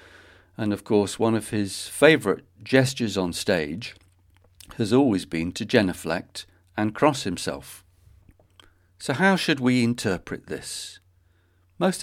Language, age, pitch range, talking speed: English, 50-69, 90-110 Hz, 125 wpm